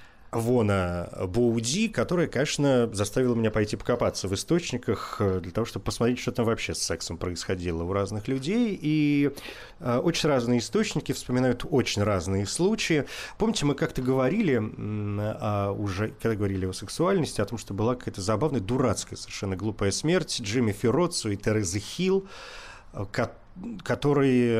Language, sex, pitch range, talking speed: Russian, male, 100-135 Hz, 140 wpm